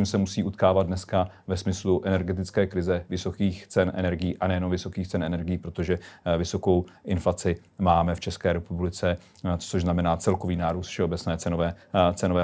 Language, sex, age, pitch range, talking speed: Czech, male, 40-59, 95-105 Hz, 145 wpm